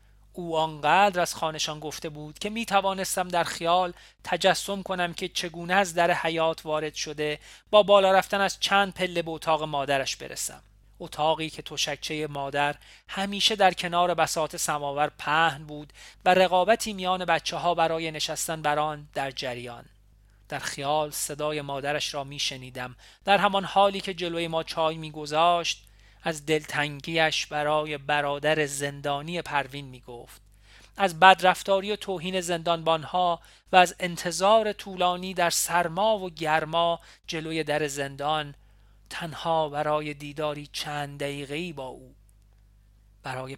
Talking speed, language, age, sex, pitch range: 135 wpm, Persian, 40-59, male, 145-180 Hz